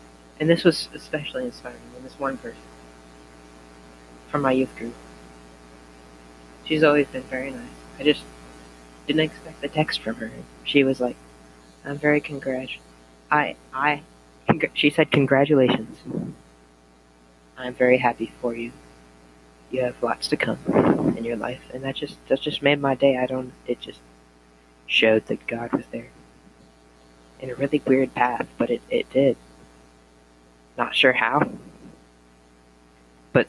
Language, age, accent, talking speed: English, 30-49, American, 140 wpm